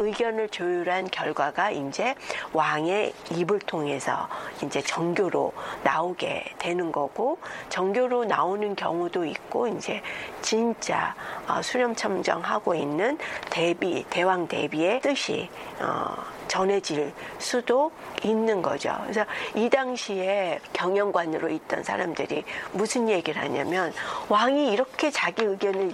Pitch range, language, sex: 175-245 Hz, Korean, female